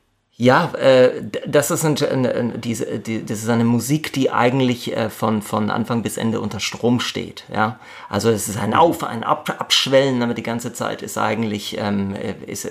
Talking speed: 195 wpm